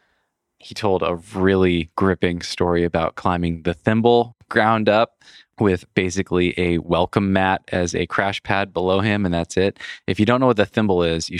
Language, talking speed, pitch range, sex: English, 185 wpm, 85-105 Hz, male